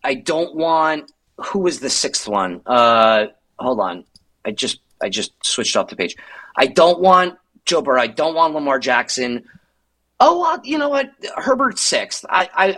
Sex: male